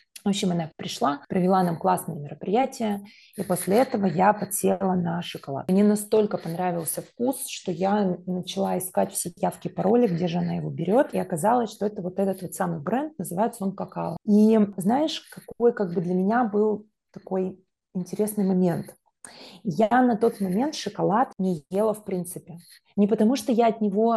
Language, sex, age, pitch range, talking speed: Russian, female, 20-39, 180-210 Hz, 170 wpm